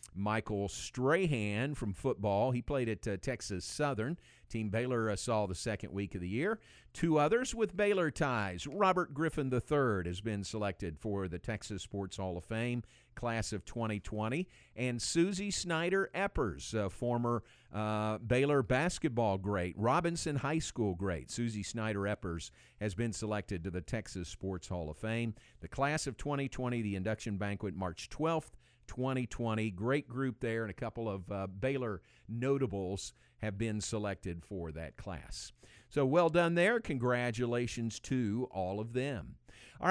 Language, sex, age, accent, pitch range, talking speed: English, male, 50-69, American, 105-145 Hz, 155 wpm